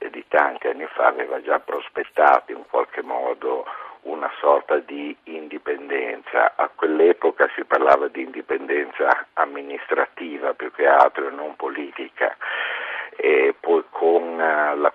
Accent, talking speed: native, 125 wpm